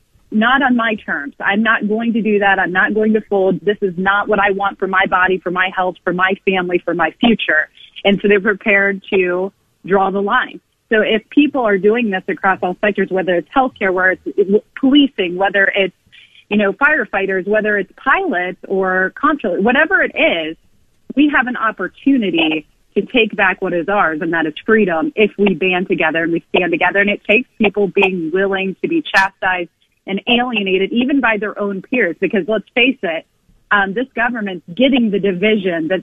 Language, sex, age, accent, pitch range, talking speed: English, female, 30-49, American, 185-220 Hz, 195 wpm